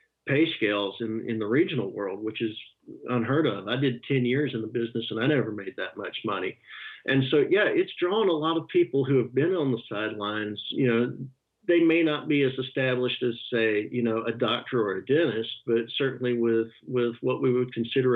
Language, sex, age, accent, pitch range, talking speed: English, male, 50-69, American, 115-135 Hz, 215 wpm